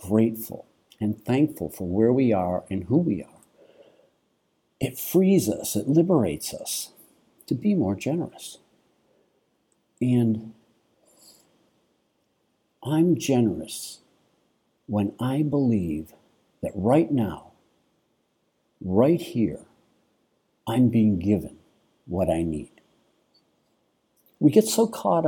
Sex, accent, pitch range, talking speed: male, American, 100-145 Hz, 100 wpm